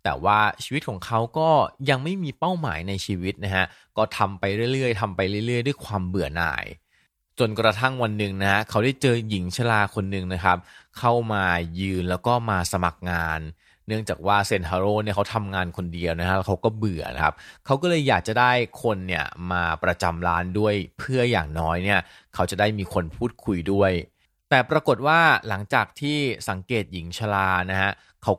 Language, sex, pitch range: Thai, male, 90-115 Hz